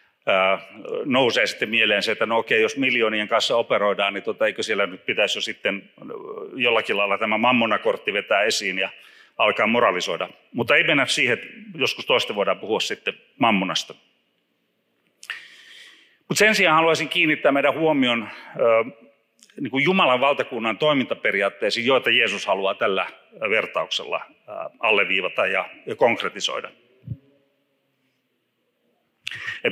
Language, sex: Finnish, male